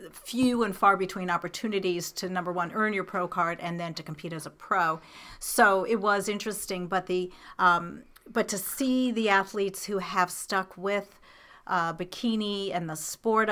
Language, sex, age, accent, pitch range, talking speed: English, female, 40-59, American, 180-230 Hz, 180 wpm